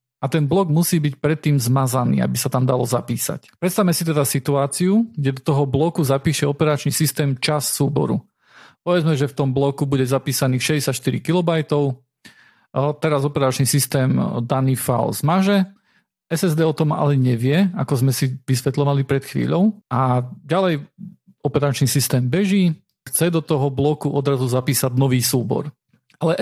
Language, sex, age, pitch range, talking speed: Slovak, male, 40-59, 135-175 Hz, 150 wpm